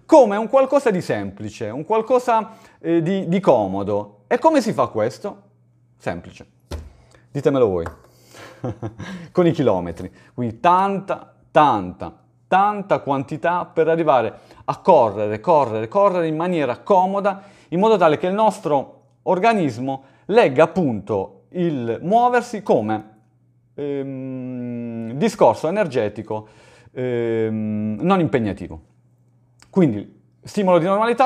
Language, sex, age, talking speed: Italian, male, 40-59, 110 wpm